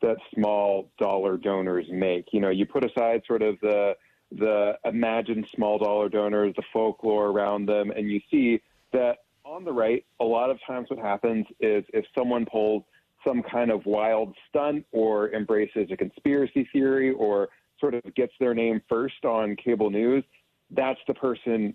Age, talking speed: 40-59, 170 wpm